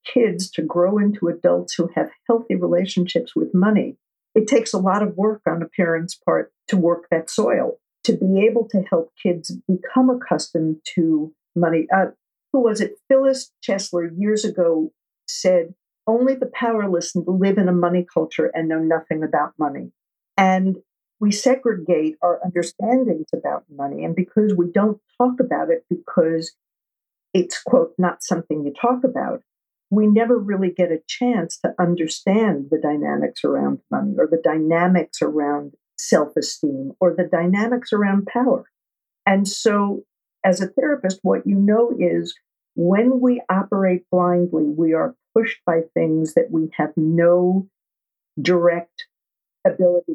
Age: 50-69